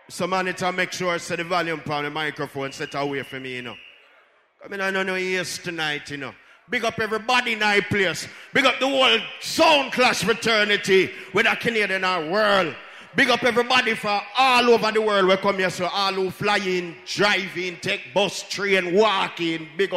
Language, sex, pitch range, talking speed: English, male, 155-205 Hz, 215 wpm